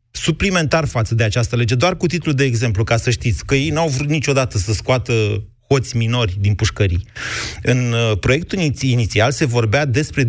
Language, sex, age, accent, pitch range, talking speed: Romanian, male, 30-49, native, 115-155 Hz, 175 wpm